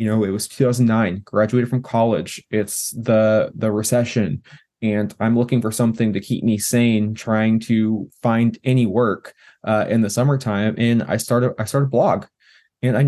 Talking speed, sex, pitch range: 180 wpm, male, 115-135 Hz